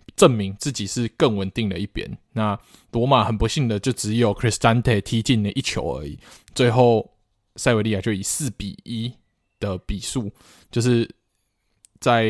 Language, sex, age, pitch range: Chinese, male, 20-39, 105-130 Hz